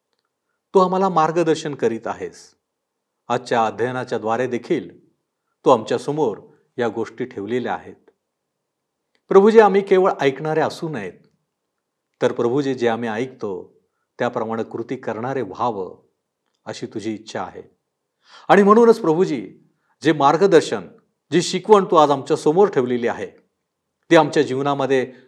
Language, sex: Marathi, male